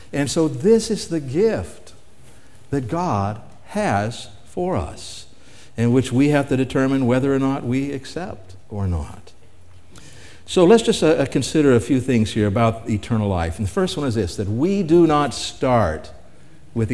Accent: American